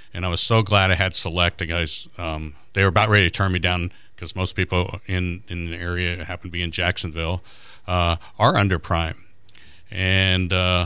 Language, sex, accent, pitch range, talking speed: English, male, American, 85-105 Hz, 200 wpm